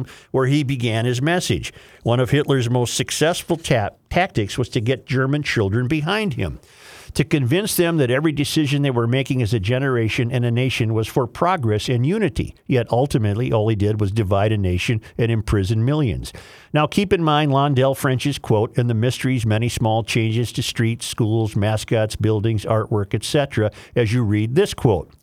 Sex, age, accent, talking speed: male, 50-69, American, 180 wpm